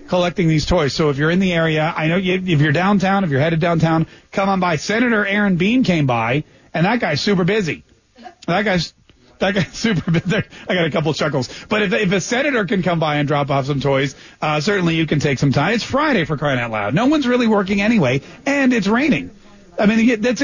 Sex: male